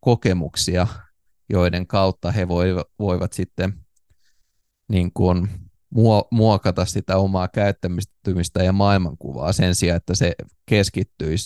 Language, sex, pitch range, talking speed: Finnish, male, 90-100 Hz, 100 wpm